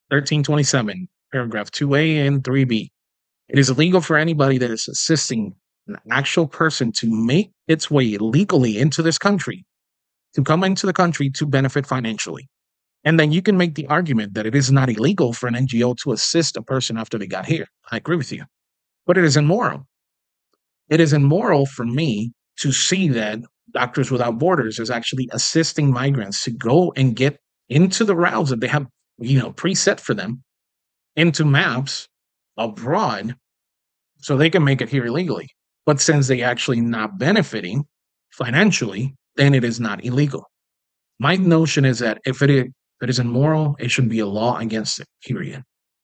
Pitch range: 120-155 Hz